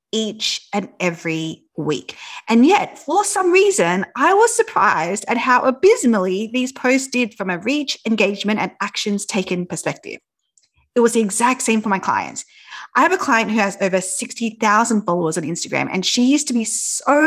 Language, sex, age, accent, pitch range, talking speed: English, female, 30-49, Australian, 190-270 Hz, 175 wpm